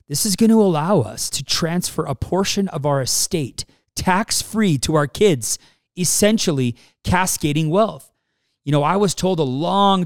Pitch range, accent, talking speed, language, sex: 115-165 Hz, American, 160 wpm, English, male